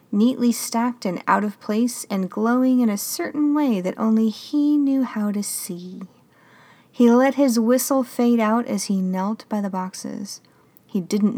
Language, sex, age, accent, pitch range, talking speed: English, female, 30-49, American, 185-230 Hz, 175 wpm